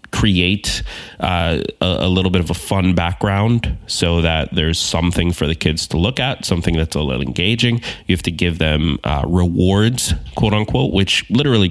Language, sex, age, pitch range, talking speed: English, male, 30-49, 85-105 Hz, 185 wpm